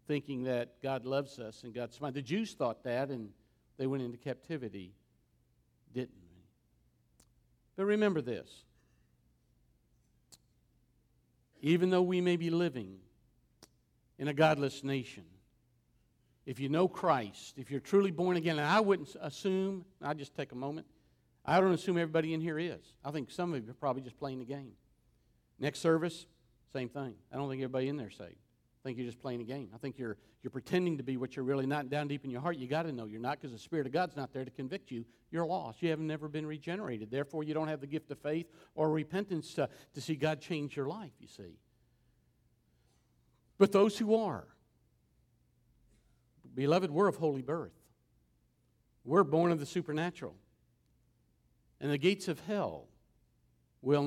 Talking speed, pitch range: 180 wpm, 125-165 Hz